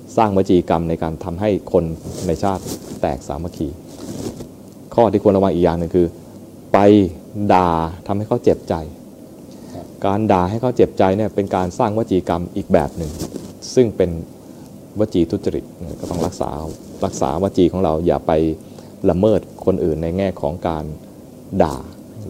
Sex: male